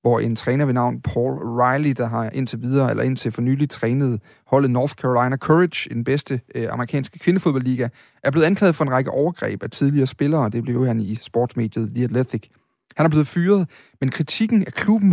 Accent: native